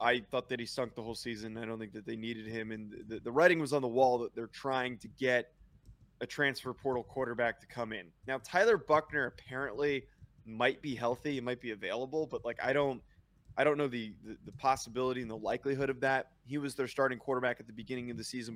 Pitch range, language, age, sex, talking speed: 115-145 Hz, English, 20-39, male, 235 wpm